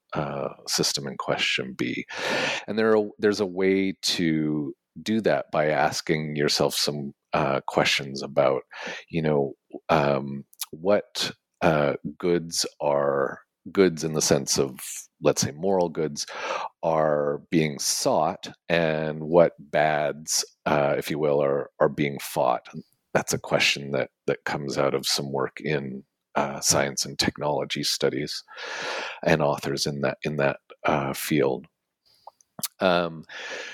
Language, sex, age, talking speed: English, male, 40-59, 135 wpm